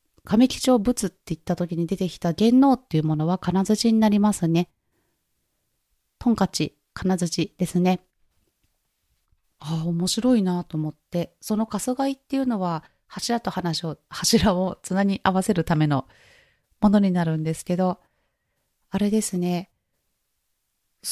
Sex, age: female, 30-49